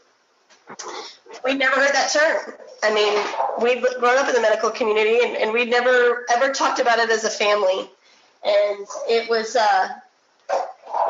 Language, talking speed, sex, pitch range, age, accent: English, 155 wpm, female, 215-270 Hz, 30-49, American